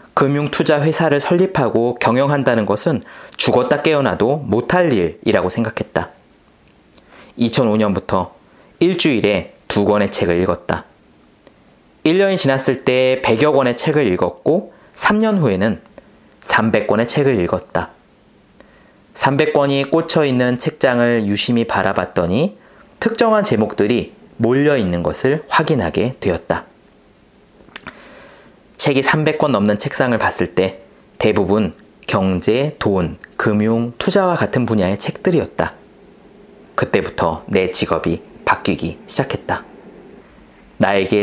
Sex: male